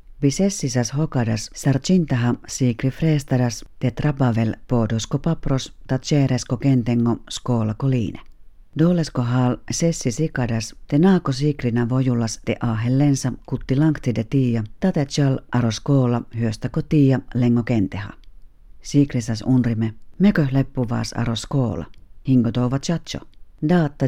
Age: 40-59